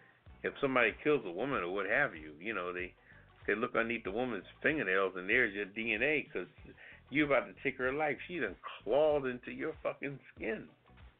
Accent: American